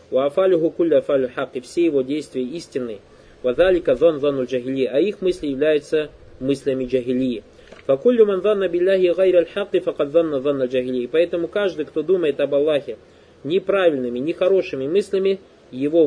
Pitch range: 135-195 Hz